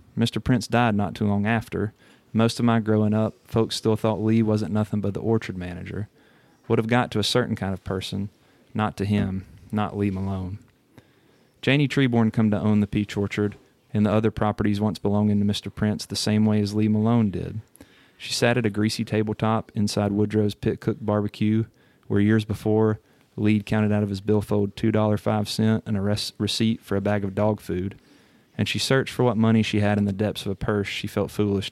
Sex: male